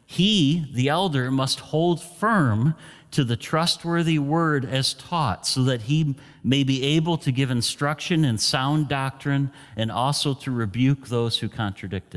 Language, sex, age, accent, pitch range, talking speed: English, male, 40-59, American, 105-145 Hz, 155 wpm